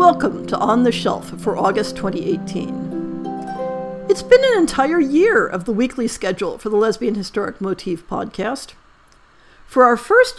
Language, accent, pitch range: English, American, 200-260 Hz